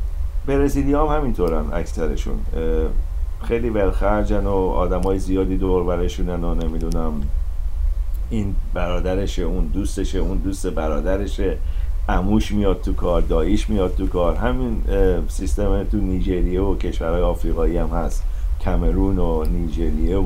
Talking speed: 115 wpm